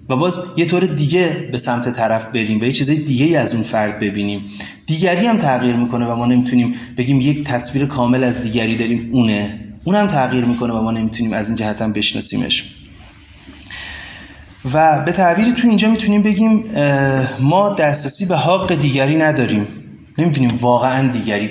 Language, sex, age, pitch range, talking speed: Persian, male, 30-49, 120-170 Hz, 165 wpm